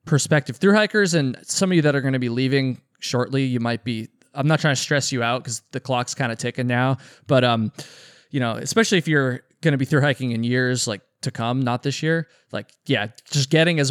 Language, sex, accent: English, male, American